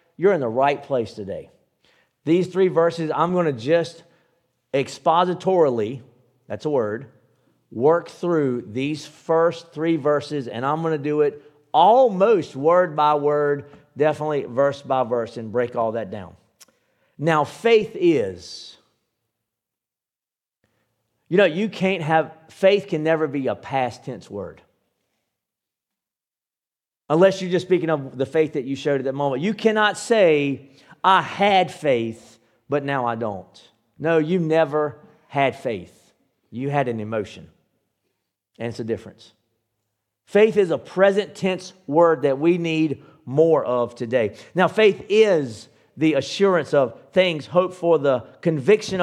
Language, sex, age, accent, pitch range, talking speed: English, male, 50-69, American, 135-180 Hz, 145 wpm